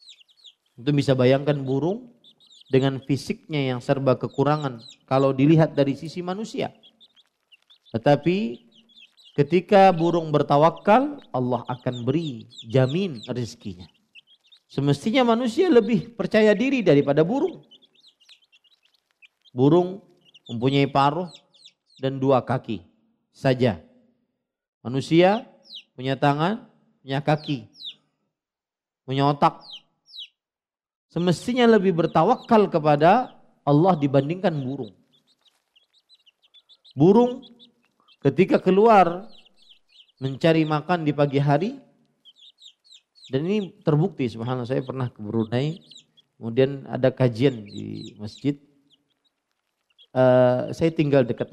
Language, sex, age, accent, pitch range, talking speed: Indonesian, male, 40-59, native, 130-185 Hz, 85 wpm